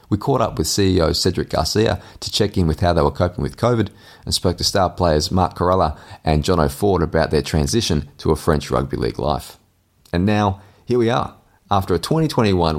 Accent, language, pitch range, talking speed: Australian, English, 80-100 Hz, 205 wpm